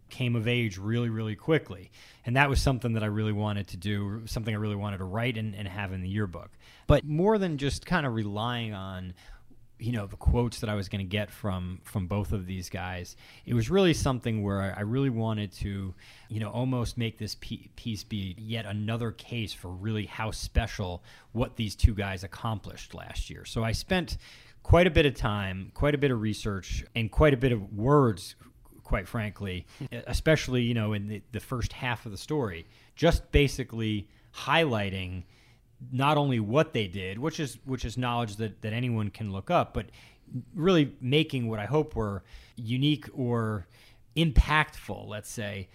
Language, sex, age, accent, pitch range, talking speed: English, male, 30-49, American, 105-130 Hz, 190 wpm